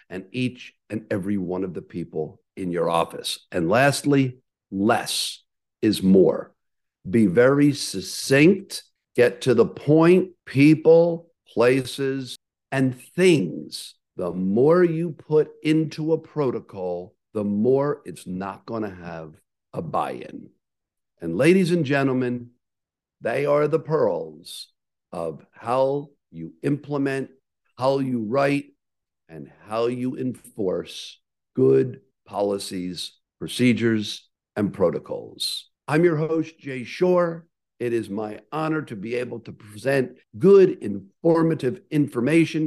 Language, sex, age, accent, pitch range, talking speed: English, male, 50-69, American, 105-155 Hz, 115 wpm